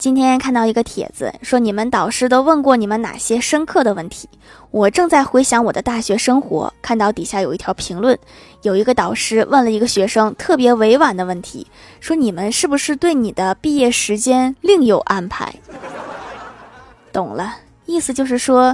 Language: Chinese